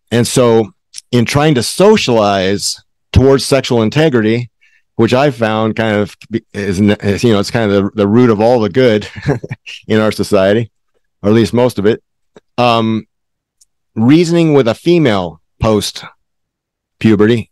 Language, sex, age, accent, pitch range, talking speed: English, male, 50-69, American, 100-120 Hz, 145 wpm